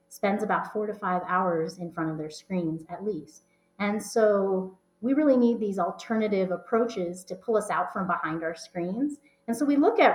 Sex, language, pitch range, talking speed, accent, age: female, English, 175-225 Hz, 200 wpm, American, 30-49